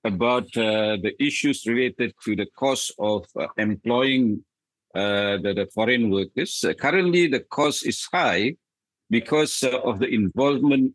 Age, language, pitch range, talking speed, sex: 50-69, English, 110-155 Hz, 150 wpm, male